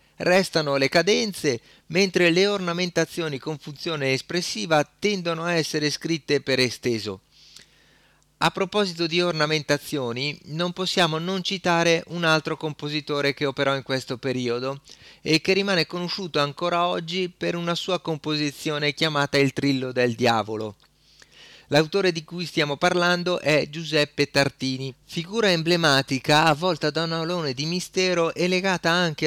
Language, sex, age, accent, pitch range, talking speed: Italian, male, 30-49, native, 130-175 Hz, 135 wpm